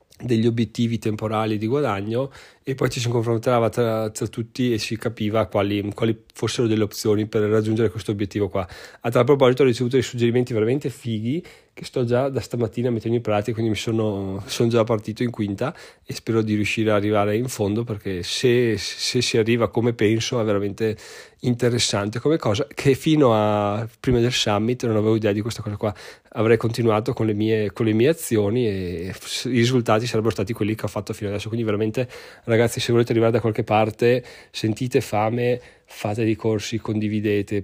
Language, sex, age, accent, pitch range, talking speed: Italian, male, 30-49, native, 105-120 Hz, 185 wpm